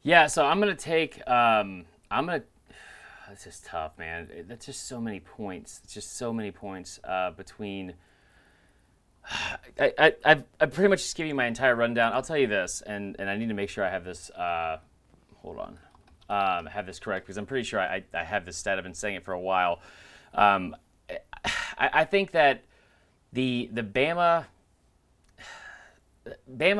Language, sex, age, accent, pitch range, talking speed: English, male, 30-49, American, 100-130 Hz, 185 wpm